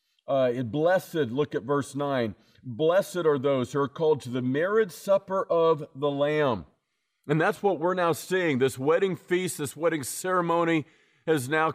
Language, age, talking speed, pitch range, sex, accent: English, 40-59, 165 wpm, 135-165 Hz, male, American